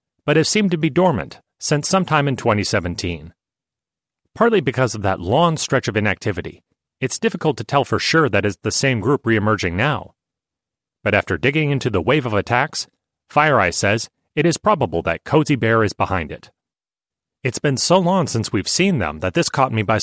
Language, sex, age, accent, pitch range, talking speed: English, male, 30-49, American, 105-145 Hz, 190 wpm